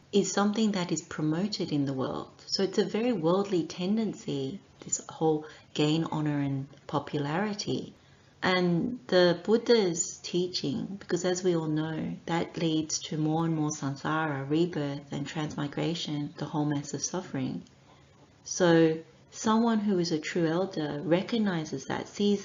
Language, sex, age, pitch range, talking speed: English, female, 30-49, 150-180 Hz, 145 wpm